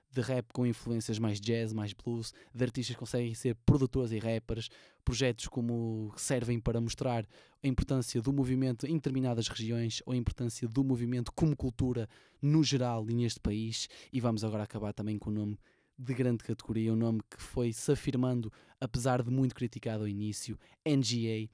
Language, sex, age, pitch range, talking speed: Portuguese, male, 20-39, 115-130 Hz, 180 wpm